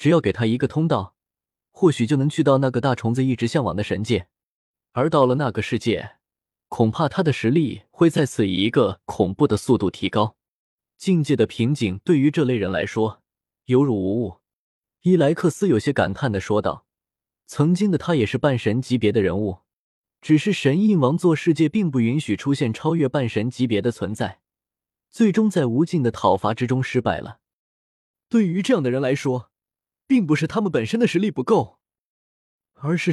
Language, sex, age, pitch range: Chinese, male, 20-39, 110-160 Hz